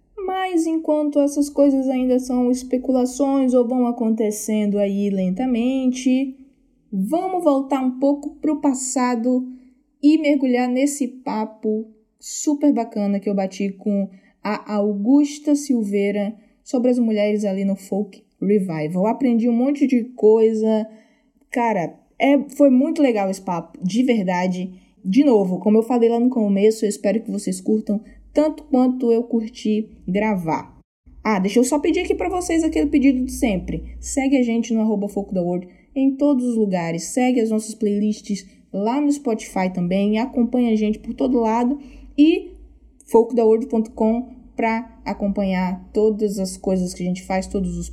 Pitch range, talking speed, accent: 205-265 Hz, 150 wpm, Brazilian